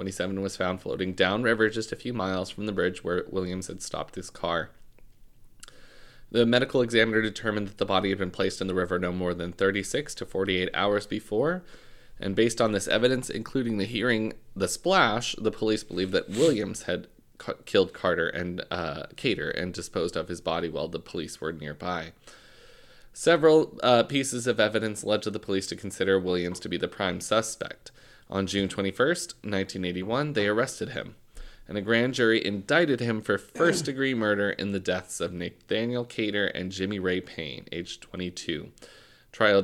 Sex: male